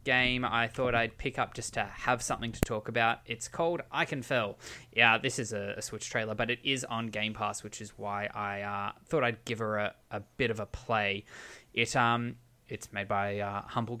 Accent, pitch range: Australian, 100-115 Hz